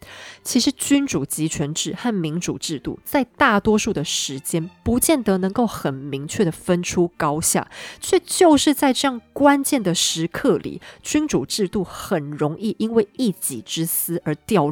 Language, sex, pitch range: Chinese, female, 170-275 Hz